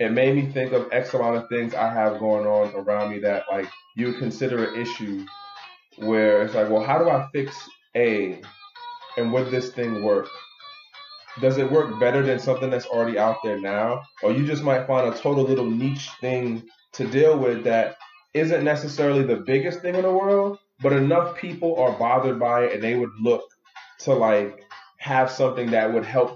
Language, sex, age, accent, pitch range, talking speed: English, male, 20-39, American, 115-165 Hz, 200 wpm